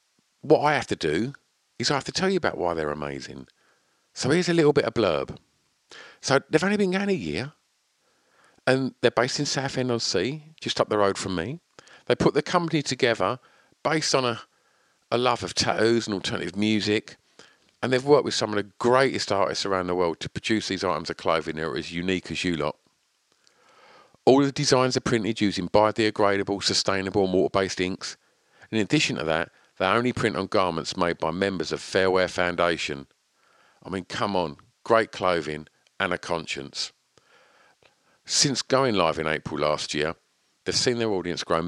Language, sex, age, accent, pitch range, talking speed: English, male, 50-69, British, 85-125 Hz, 185 wpm